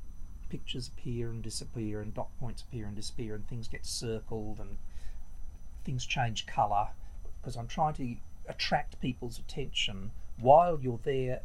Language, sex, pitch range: English, male, 80-120 Hz